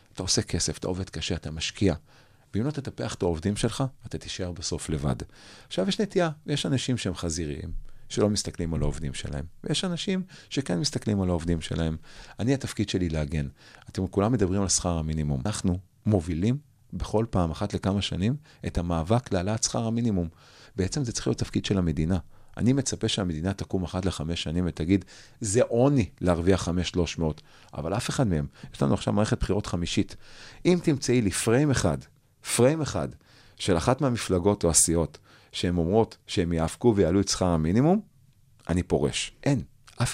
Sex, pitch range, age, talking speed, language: male, 85-115 Hz, 40-59, 170 wpm, Hebrew